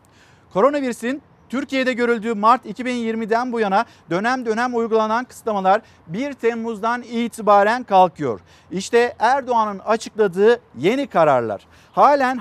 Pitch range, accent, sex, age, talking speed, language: 195-230 Hz, native, male, 50-69, 100 wpm, Turkish